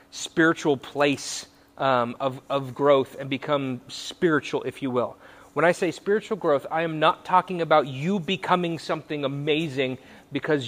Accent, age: American, 30-49